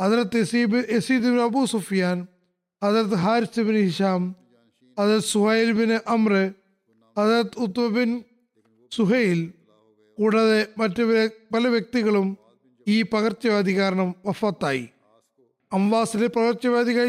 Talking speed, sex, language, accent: 90 wpm, male, Malayalam, native